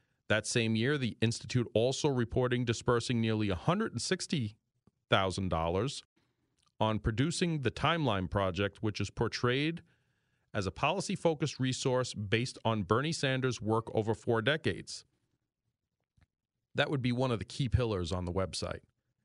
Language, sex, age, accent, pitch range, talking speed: English, male, 40-59, American, 105-130 Hz, 130 wpm